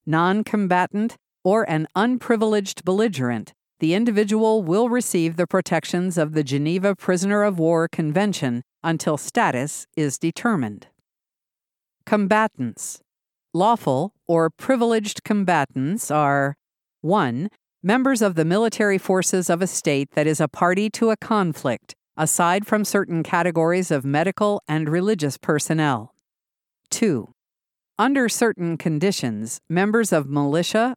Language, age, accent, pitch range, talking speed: English, 50-69, American, 155-205 Hz, 115 wpm